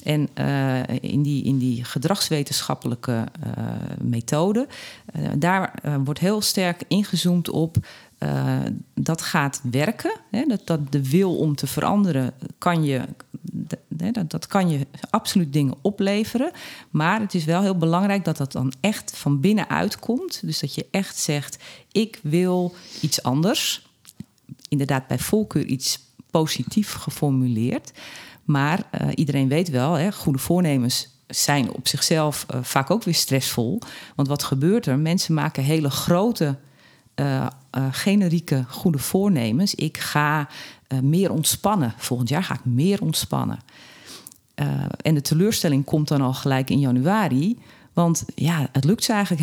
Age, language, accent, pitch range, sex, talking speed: 40-59, Dutch, Dutch, 135-185 Hz, female, 145 wpm